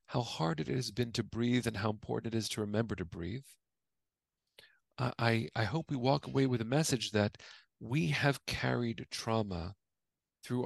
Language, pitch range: English, 105-125 Hz